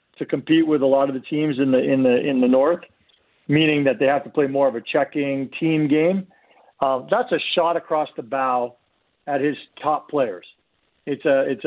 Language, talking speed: English, 210 wpm